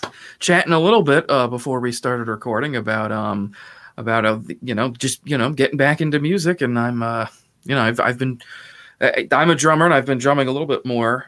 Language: English